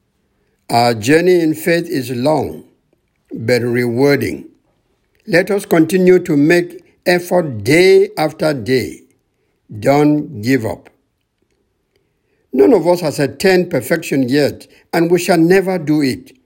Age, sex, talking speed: 60-79, male, 120 wpm